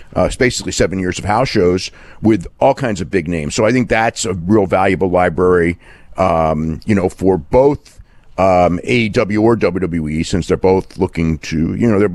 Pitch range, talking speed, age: 85-110 Hz, 195 wpm, 50-69